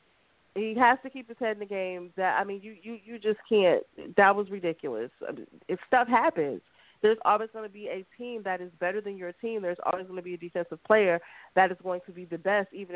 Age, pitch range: 30-49, 175-220 Hz